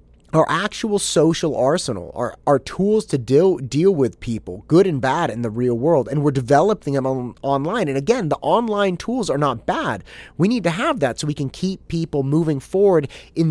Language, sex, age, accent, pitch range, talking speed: English, male, 30-49, American, 105-155 Hz, 205 wpm